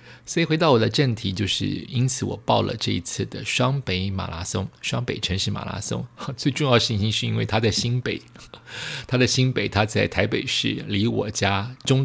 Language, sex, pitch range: Chinese, male, 95-125 Hz